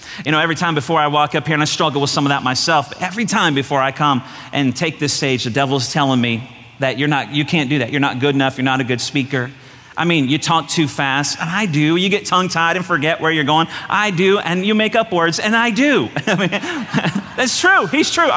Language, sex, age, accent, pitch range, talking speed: English, male, 40-59, American, 150-230 Hz, 250 wpm